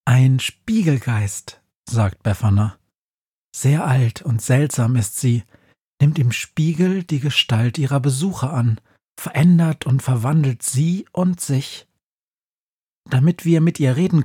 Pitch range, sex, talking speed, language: 115-160 Hz, male, 120 wpm, German